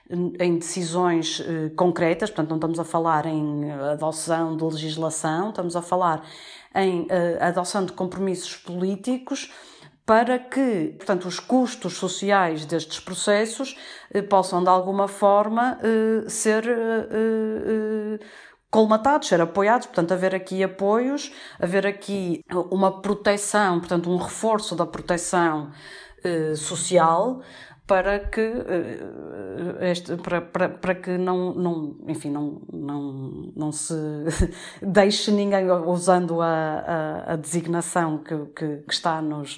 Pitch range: 165-200 Hz